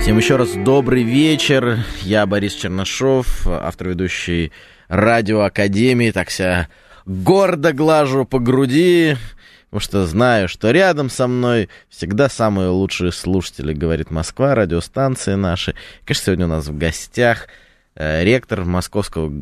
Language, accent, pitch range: Russian, native, 95-135 Hz